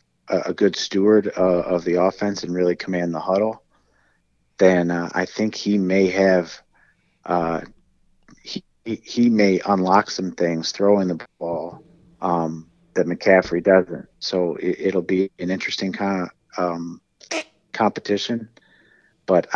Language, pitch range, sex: English, 85-95 Hz, male